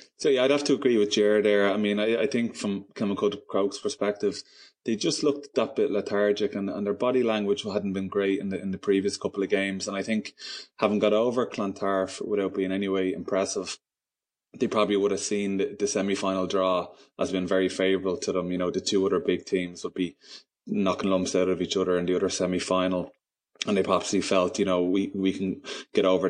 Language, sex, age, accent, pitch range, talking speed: English, male, 20-39, Irish, 90-100 Hz, 225 wpm